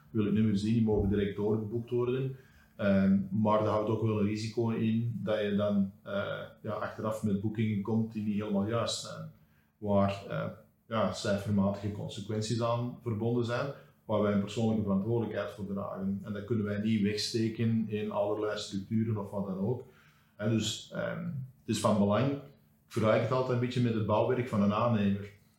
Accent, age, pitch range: Dutch, 40-59, 100-115 Hz